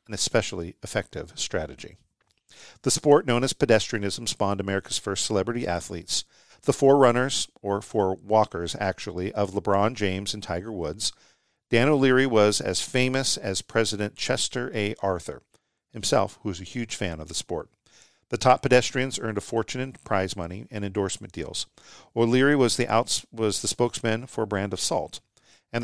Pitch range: 100-120 Hz